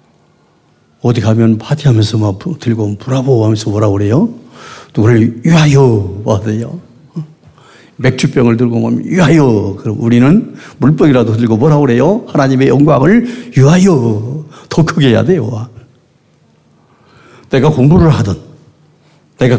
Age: 50-69